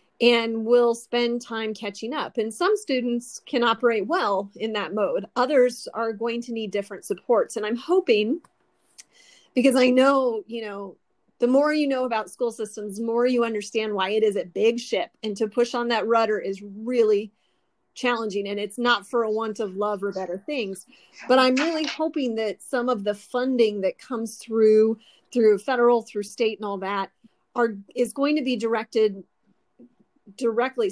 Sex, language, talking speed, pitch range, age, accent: female, English, 180 wpm, 215-250 Hz, 30-49, American